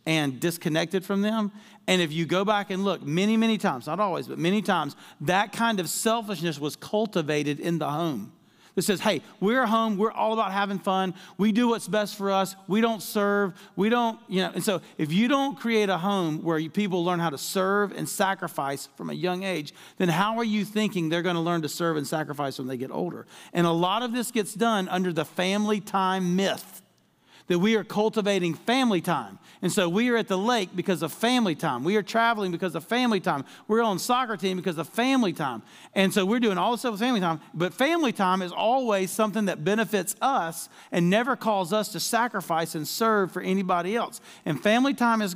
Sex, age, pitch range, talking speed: male, 40-59, 175-225 Hz, 220 wpm